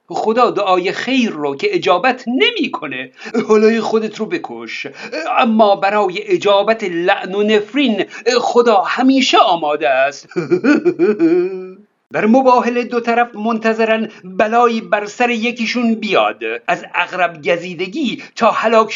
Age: 50-69